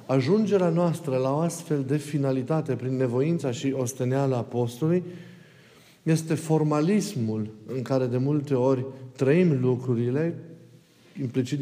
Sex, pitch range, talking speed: male, 130-165 Hz, 115 wpm